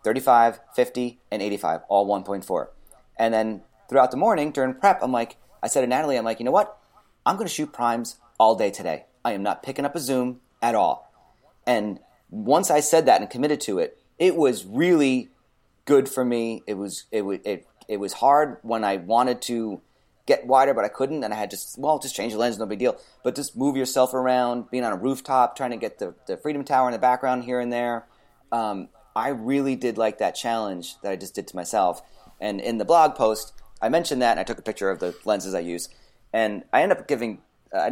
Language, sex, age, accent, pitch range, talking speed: English, male, 30-49, American, 110-145 Hz, 230 wpm